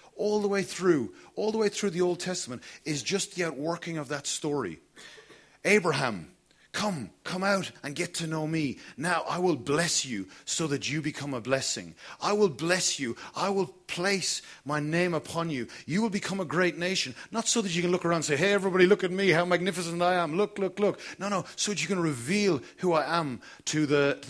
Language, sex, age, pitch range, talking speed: English, male, 40-59, 125-180 Hz, 220 wpm